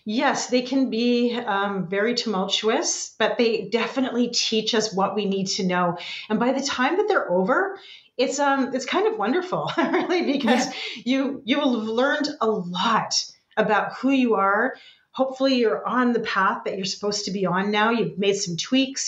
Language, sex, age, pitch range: English, female, 30-49, 185-245 Hz